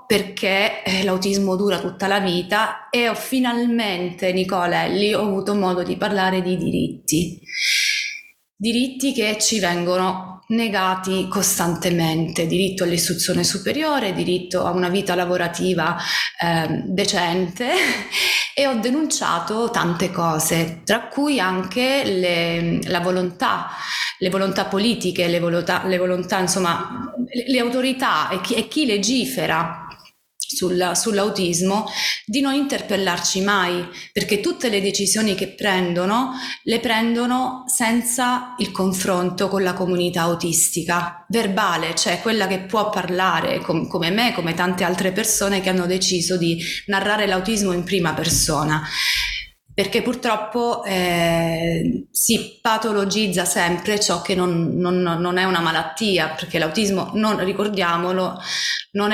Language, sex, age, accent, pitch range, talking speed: Italian, female, 20-39, native, 175-220 Hz, 115 wpm